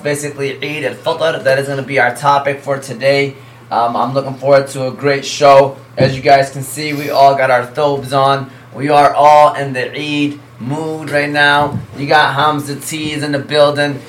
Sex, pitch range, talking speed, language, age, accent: male, 135-150 Hz, 200 wpm, English, 20-39, American